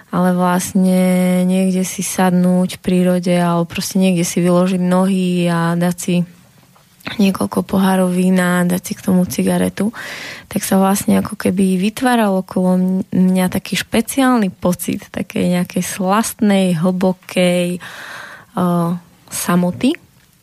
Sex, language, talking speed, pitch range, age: female, Slovak, 120 wpm, 180-195 Hz, 20-39